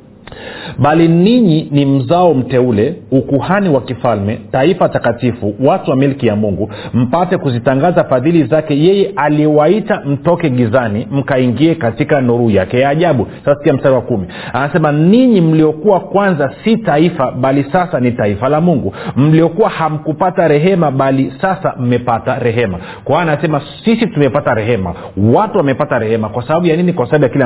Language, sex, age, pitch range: Swahili, male, 40-59, 120-160 Hz